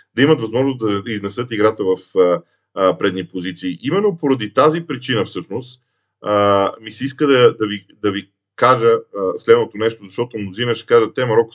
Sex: male